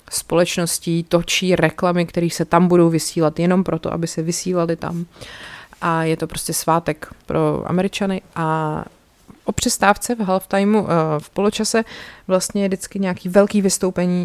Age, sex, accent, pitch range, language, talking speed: 30-49, female, native, 160-190 Hz, Czech, 145 wpm